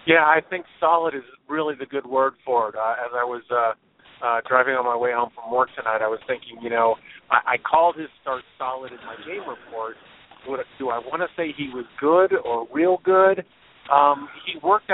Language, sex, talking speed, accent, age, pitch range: English, male, 215 wpm, American, 40-59, 130-150 Hz